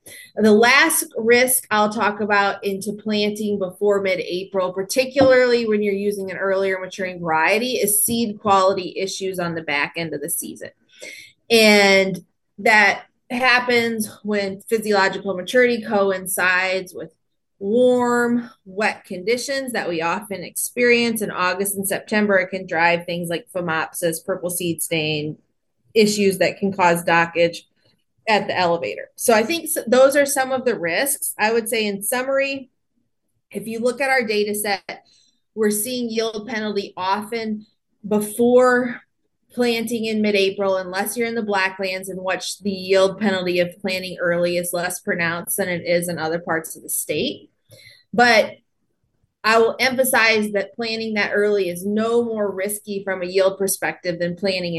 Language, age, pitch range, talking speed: English, 30-49, 185-230 Hz, 150 wpm